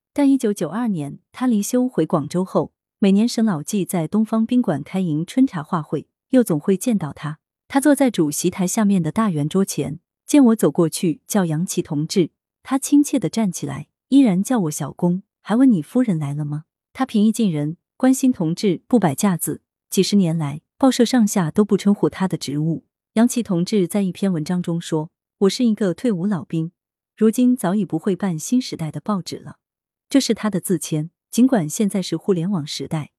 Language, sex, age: Chinese, female, 30-49